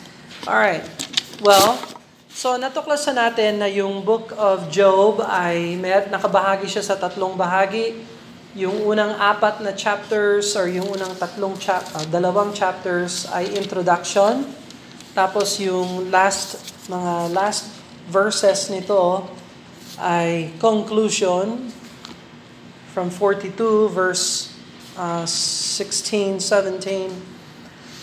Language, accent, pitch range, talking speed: Filipino, native, 185-215 Hz, 95 wpm